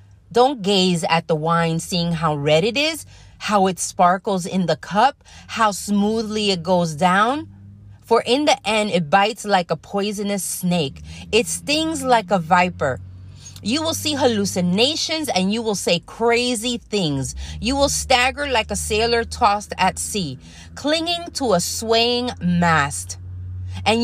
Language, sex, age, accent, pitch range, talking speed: English, female, 30-49, American, 160-230 Hz, 150 wpm